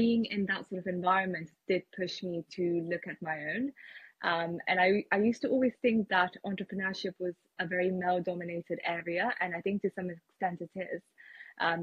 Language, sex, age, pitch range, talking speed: English, female, 20-39, 175-200 Hz, 195 wpm